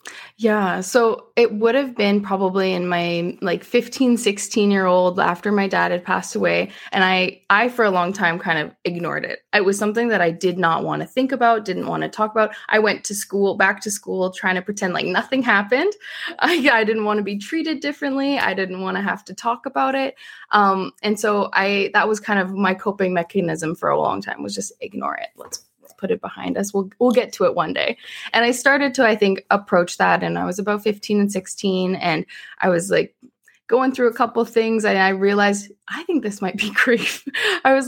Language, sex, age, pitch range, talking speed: English, female, 20-39, 185-240 Hz, 230 wpm